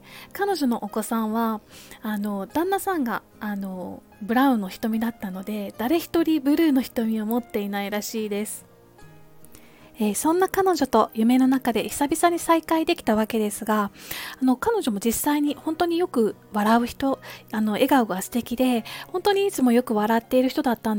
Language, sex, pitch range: Japanese, female, 215-290 Hz